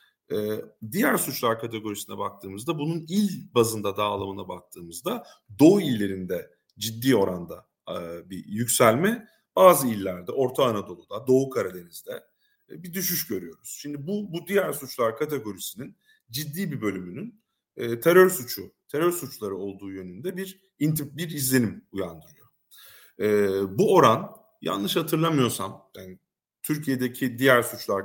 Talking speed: 110 wpm